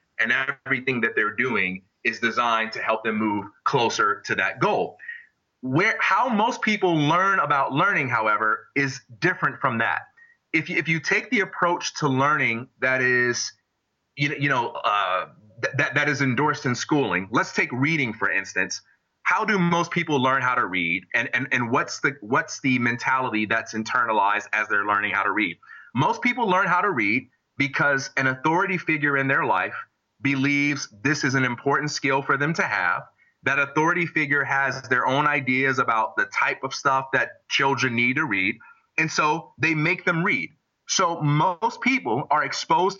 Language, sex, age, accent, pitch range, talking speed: English, male, 30-49, American, 130-170 Hz, 180 wpm